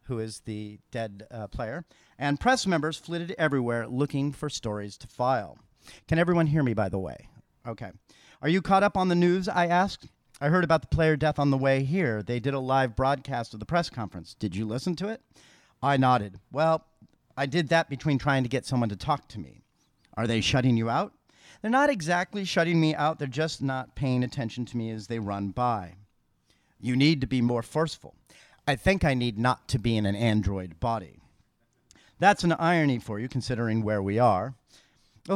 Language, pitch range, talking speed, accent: English, 115-160 Hz, 205 wpm, American